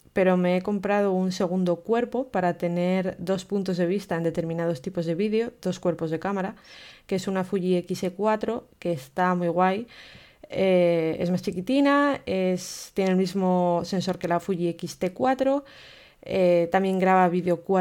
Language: Spanish